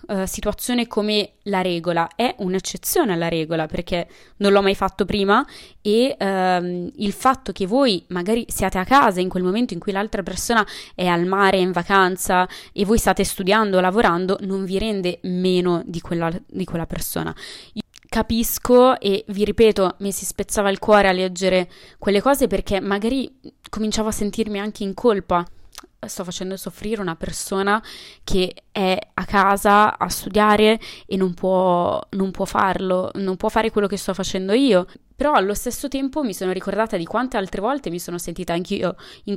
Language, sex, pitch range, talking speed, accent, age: Italian, female, 185-220 Hz, 175 wpm, native, 20-39